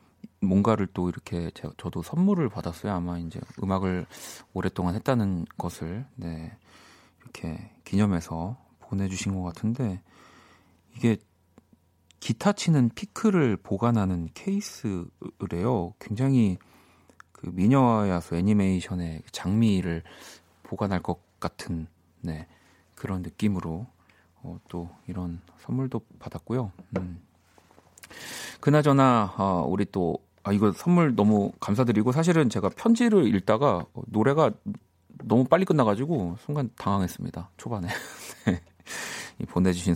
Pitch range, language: 90-130 Hz, Korean